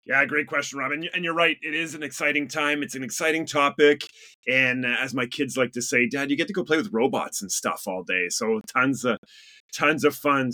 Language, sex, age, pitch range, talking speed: English, male, 30-49, 120-155 Hz, 235 wpm